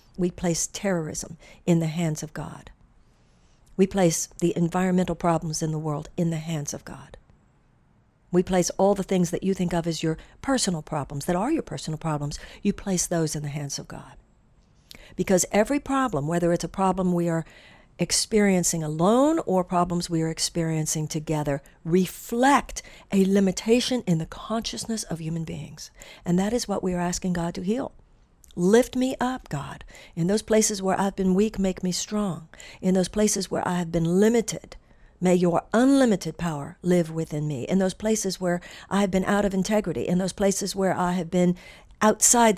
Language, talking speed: English, 180 wpm